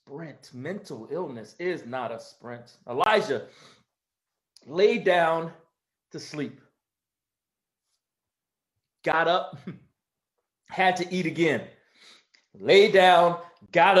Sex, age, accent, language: male, 40-59, American, English